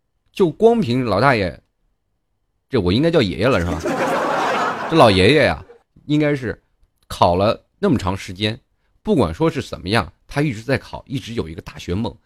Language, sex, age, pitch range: Chinese, male, 30-49, 85-120 Hz